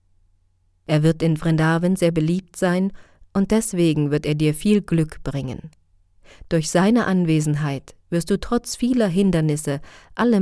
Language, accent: German, German